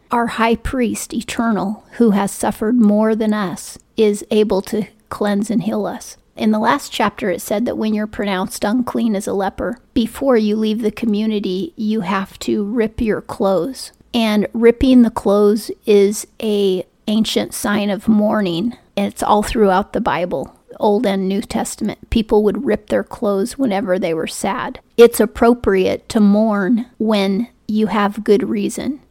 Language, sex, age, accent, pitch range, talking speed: English, female, 40-59, American, 200-230 Hz, 165 wpm